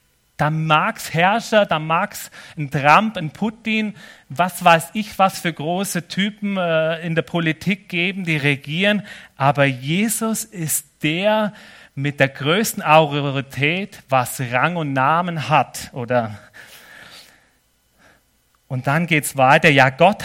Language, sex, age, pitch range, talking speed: German, male, 40-59, 140-185 Hz, 130 wpm